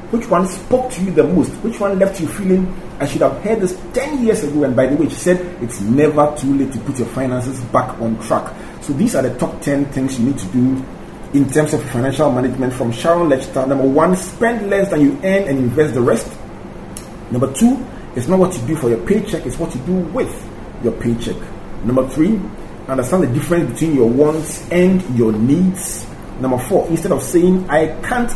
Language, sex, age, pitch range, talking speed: English, male, 40-59, 125-175 Hz, 215 wpm